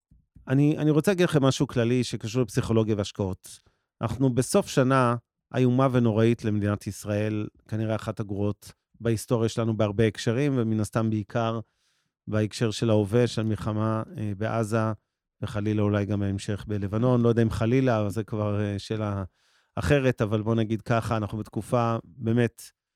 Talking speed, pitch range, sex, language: 140 wpm, 110-130 Hz, male, Hebrew